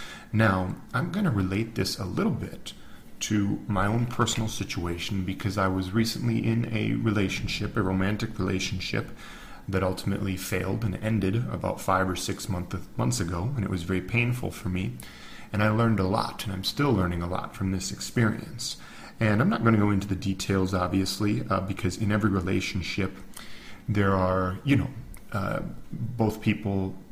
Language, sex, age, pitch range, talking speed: English, male, 40-59, 95-110 Hz, 175 wpm